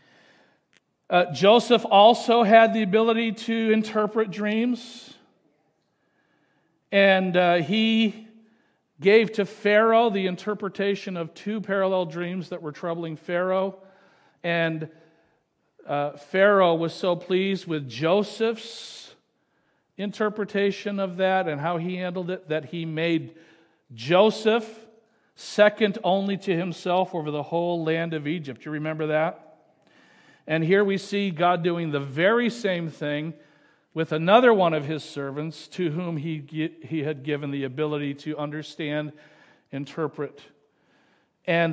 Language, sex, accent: English, male, American